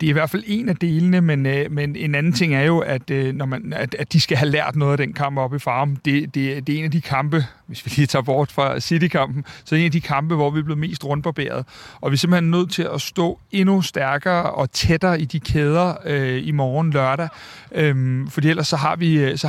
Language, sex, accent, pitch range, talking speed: Danish, male, native, 140-170 Hz, 260 wpm